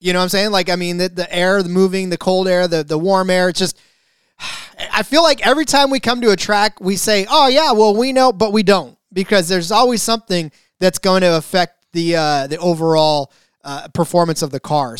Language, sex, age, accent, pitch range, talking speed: English, male, 30-49, American, 175-220 Hz, 235 wpm